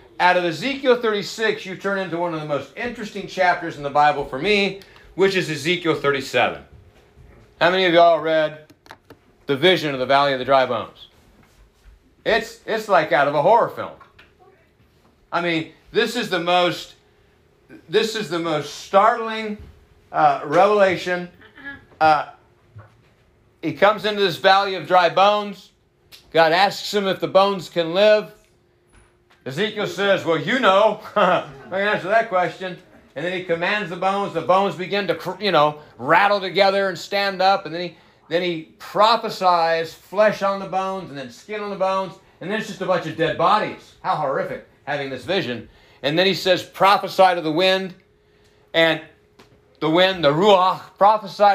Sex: male